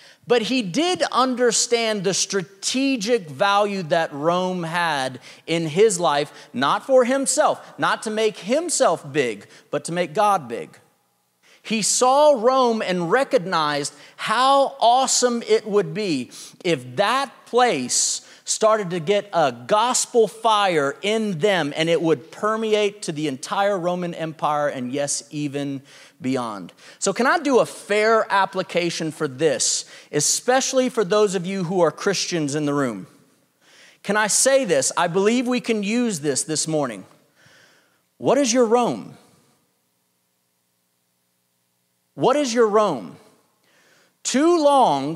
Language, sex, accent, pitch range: English, male, American, 150-235 Hz